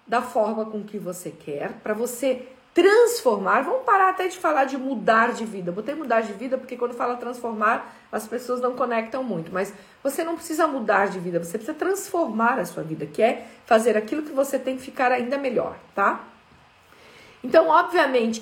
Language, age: Portuguese, 50-69